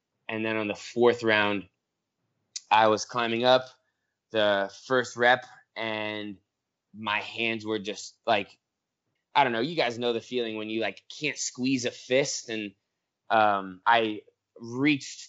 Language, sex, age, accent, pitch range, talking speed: English, male, 20-39, American, 105-120 Hz, 150 wpm